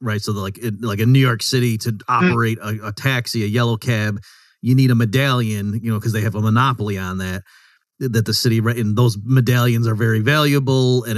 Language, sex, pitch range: English, male, 110-125 Hz